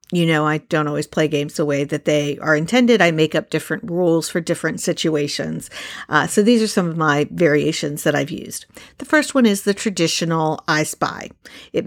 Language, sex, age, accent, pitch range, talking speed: English, female, 50-69, American, 155-195 Hz, 205 wpm